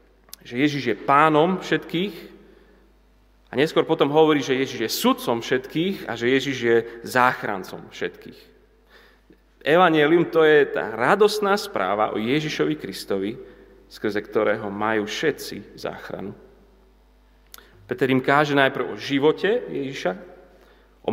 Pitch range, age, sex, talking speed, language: 105-150 Hz, 30-49, male, 120 wpm, Slovak